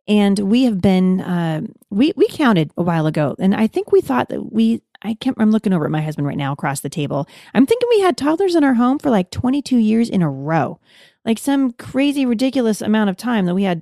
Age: 30-49